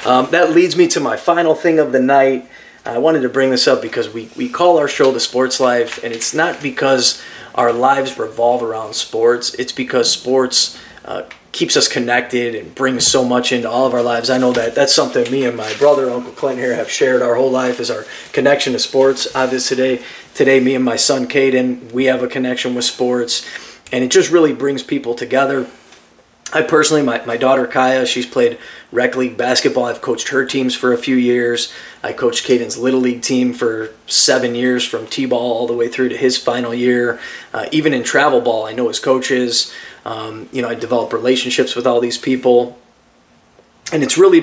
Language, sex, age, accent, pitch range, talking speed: English, male, 30-49, American, 120-130 Hz, 210 wpm